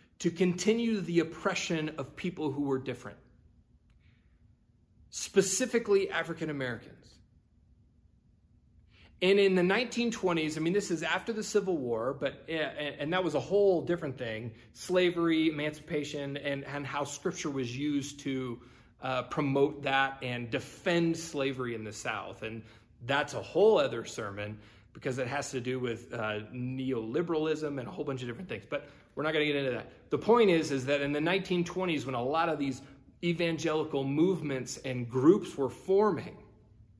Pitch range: 125-175 Hz